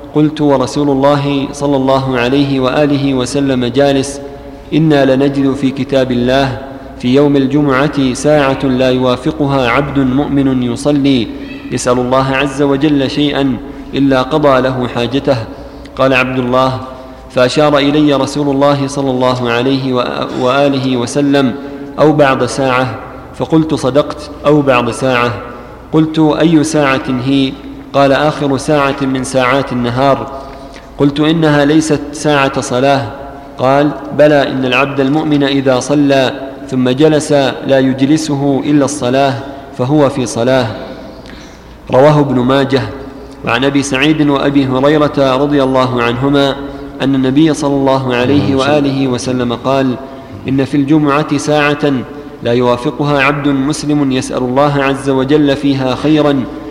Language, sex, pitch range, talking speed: Arabic, male, 130-145 Hz, 125 wpm